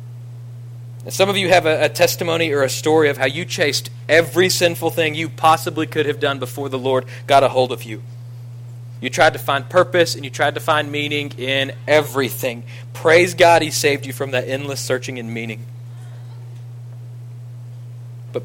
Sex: male